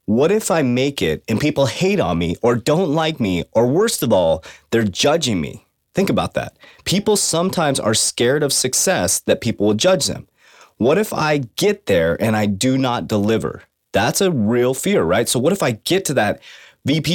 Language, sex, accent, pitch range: English, male, American, 115-155 Hz